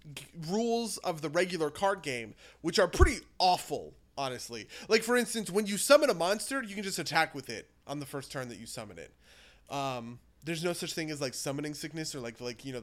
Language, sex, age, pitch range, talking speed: English, male, 30-49, 140-190 Hz, 220 wpm